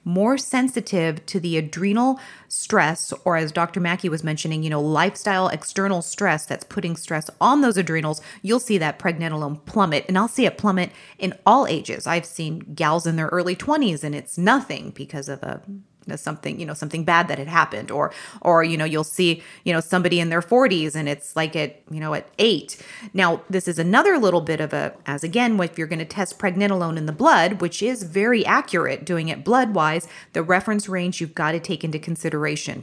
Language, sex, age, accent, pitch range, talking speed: English, female, 30-49, American, 160-205 Hz, 205 wpm